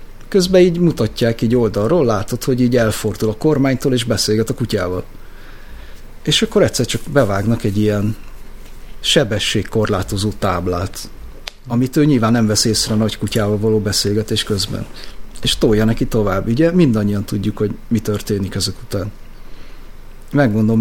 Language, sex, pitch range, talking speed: Hungarian, male, 110-145 Hz, 140 wpm